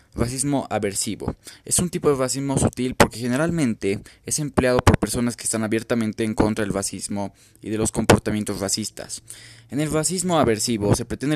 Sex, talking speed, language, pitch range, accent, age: male, 170 wpm, Spanish, 105-125 Hz, Mexican, 20-39